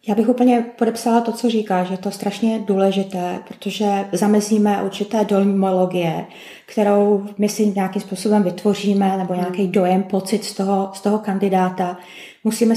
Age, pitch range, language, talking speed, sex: 20-39, 195-240 Hz, Czech, 145 wpm, female